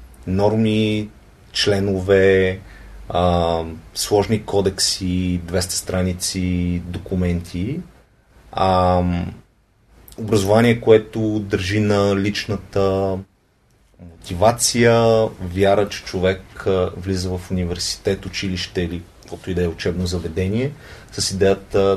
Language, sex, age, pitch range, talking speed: Bulgarian, male, 30-49, 90-105 Hz, 85 wpm